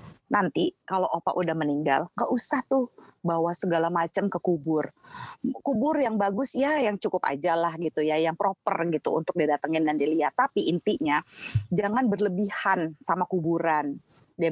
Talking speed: 150 wpm